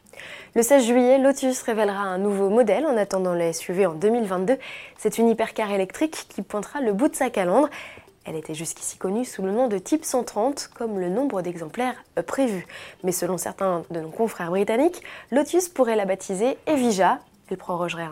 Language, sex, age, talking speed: French, female, 20-39, 180 wpm